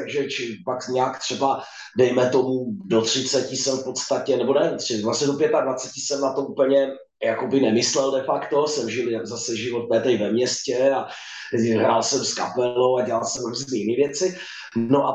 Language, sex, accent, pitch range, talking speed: Czech, male, native, 135-175 Hz, 170 wpm